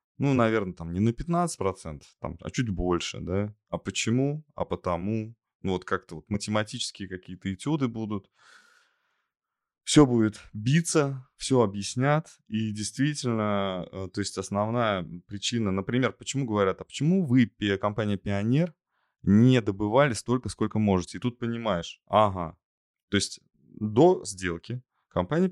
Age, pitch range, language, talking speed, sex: 20-39, 95-125 Hz, Russian, 130 wpm, male